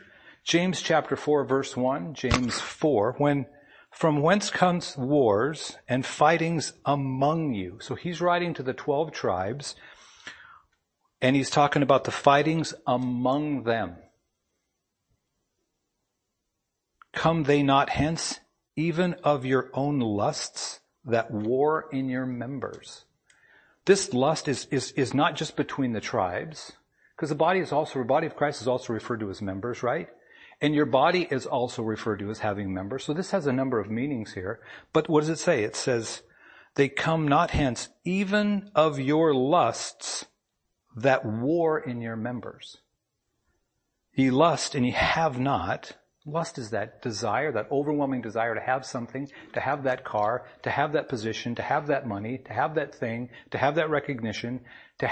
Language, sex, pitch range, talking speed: English, male, 125-155 Hz, 160 wpm